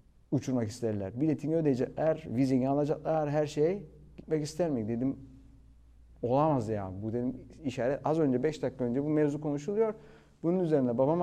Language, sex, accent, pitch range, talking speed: Turkish, male, native, 115-155 Hz, 150 wpm